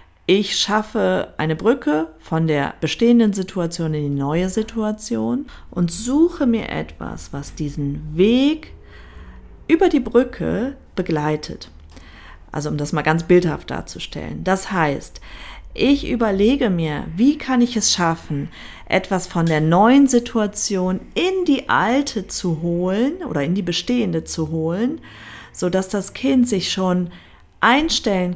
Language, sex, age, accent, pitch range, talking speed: German, female, 40-59, German, 160-225 Hz, 130 wpm